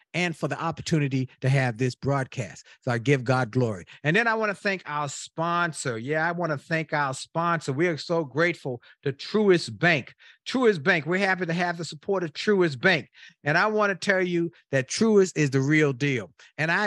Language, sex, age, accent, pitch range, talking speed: English, male, 50-69, American, 140-185 Hz, 215 wpm